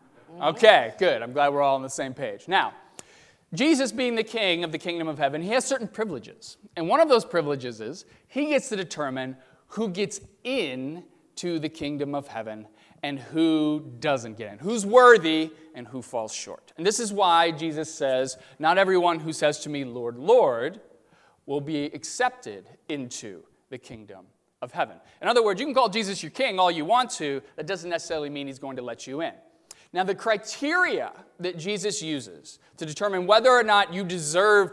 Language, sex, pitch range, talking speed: English, male, 145-210 Hz, 190 wpm